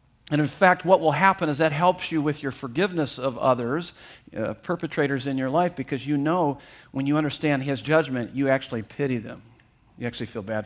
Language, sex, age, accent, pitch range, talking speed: English, male, 50-69, American, 130-165 Hz, 205 wpm